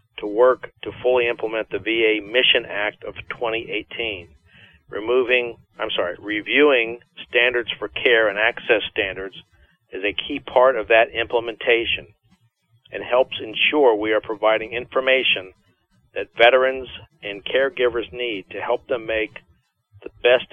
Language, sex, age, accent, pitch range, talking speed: English, male, 50-69, American, 105-125 Hz, 135 wpm